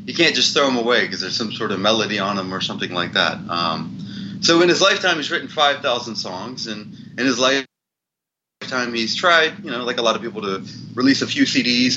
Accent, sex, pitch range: American, male, 110-155 Hz